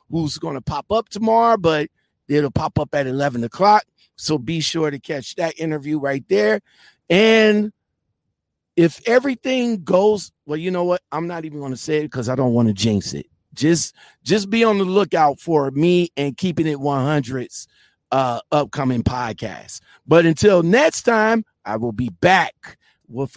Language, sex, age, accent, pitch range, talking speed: English, male, 50-69, American, 140-195 Hz, 175 wpm